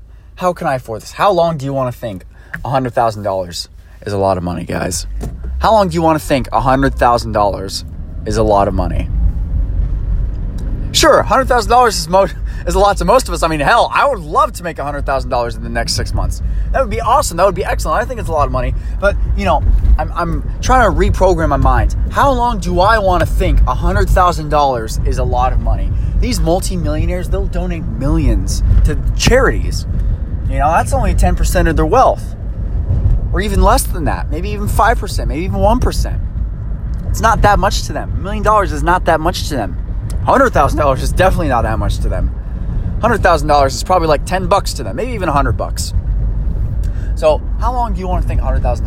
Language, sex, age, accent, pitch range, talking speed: English, male, 20-39, American, 90-140 Hz, 210 wpm